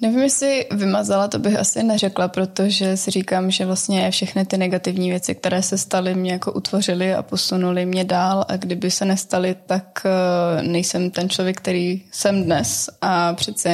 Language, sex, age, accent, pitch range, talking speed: Czech, female, 20-39, native, 180-190 Hz, 170 wpm